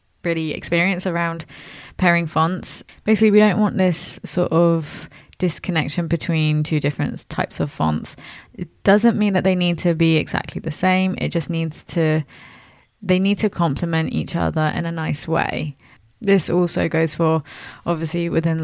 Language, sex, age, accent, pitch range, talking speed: English, female, 20-39, British, 160-180 Hz, 160 wpm